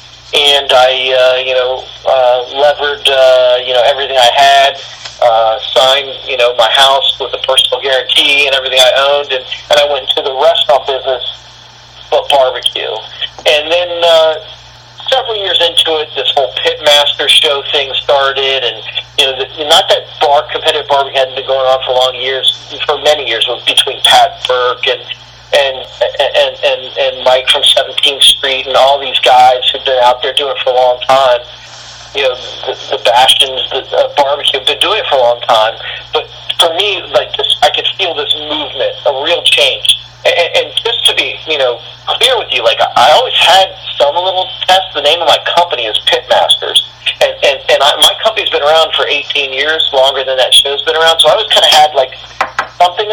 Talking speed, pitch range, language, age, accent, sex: 195 wpm, 130-160 Hz, English, 40-59, American, male